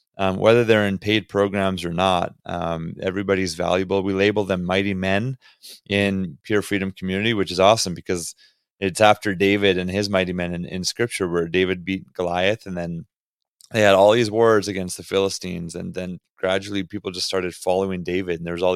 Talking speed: 190 wpm